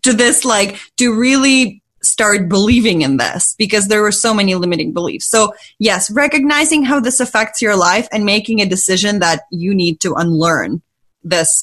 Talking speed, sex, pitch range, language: 175 wpm, female, 180-230 Hz, English